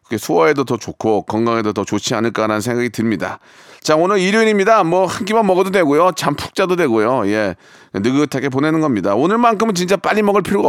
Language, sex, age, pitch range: Korean, male, 30-49, 120-180 Hz